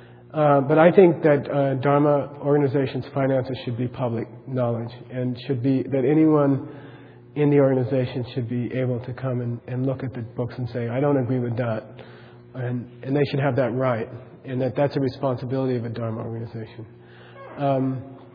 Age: 40-59